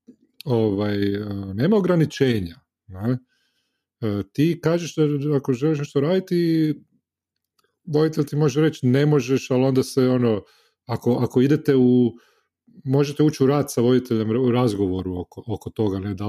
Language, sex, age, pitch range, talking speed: Croatian, male, 40-59, 110-135 Hz, 140 wpm